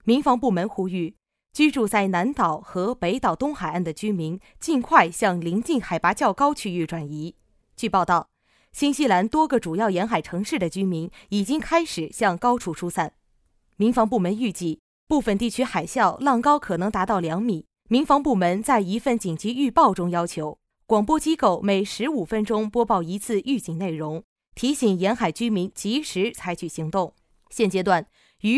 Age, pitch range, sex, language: 20-39, 175-250 Hz, female, Chinese